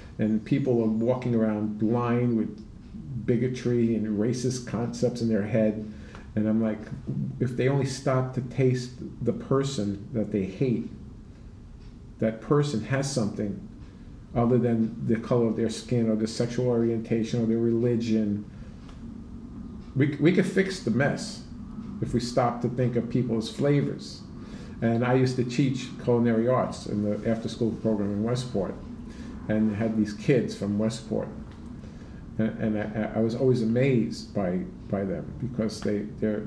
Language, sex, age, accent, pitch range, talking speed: English, male, 50-69, American, 110-125 Hz, 155 wpm